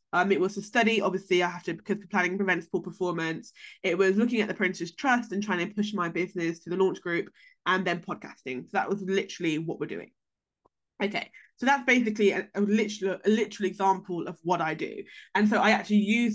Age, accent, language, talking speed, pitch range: 20-39, British, English, 225 wpm, 170-195 Hz